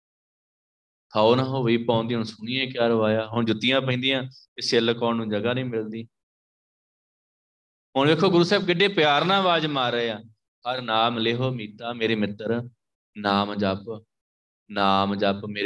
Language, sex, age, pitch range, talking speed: Punjabi, male, 20-39, 110-130 Hz, 100 wpm